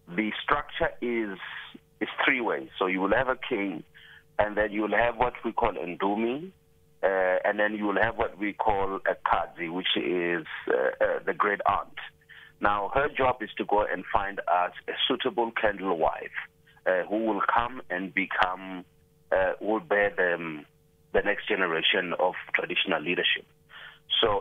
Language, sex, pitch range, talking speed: English, male, 95-135 Hz, 170 wpm